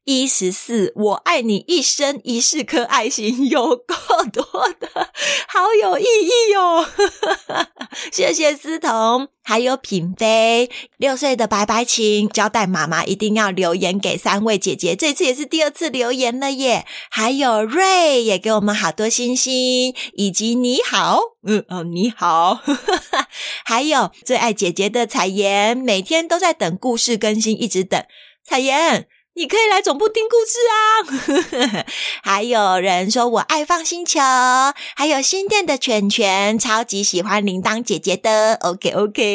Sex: female